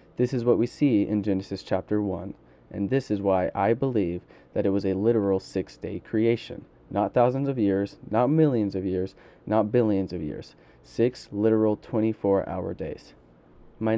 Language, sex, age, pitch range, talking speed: English, male, 20-39, 100-115 Hz, 175 wpm